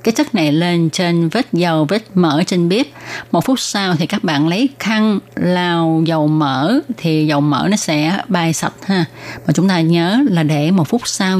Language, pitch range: Vietnamese, 160-205 Hz